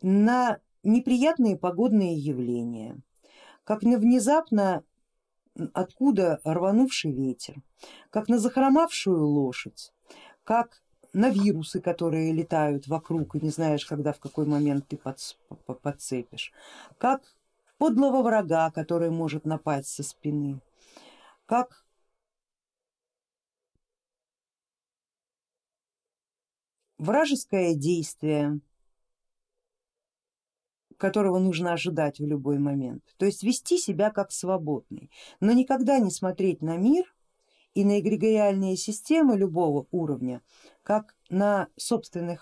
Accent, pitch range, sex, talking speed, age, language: native, 155-255 Hz, female, 95 wpm, 50-69, Russian